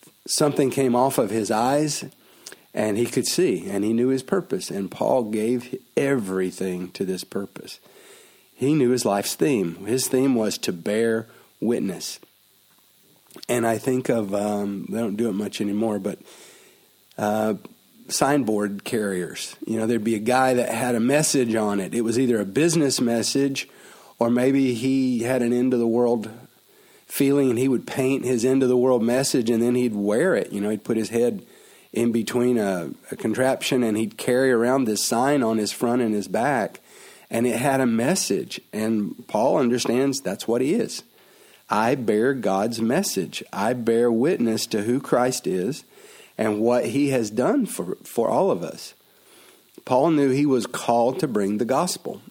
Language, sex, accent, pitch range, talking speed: English, male, American, 110-130 Hz, 175 wpm